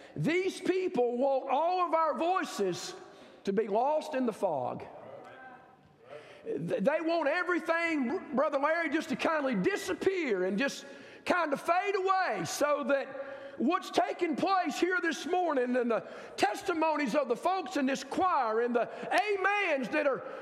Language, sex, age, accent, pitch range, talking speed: English, male, 50-69, American, 260-350 Hz, 150 wpm